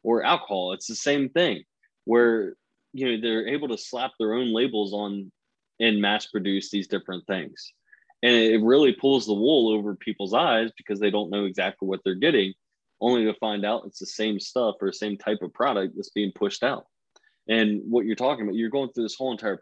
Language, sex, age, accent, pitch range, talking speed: English, male, 20-39, American, 105-120 Hz, 210 wpm